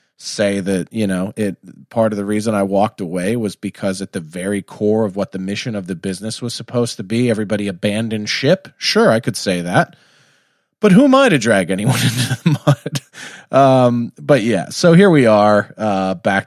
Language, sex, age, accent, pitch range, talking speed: English, male, 30-49, American, 100-135 Hz, 205 wpm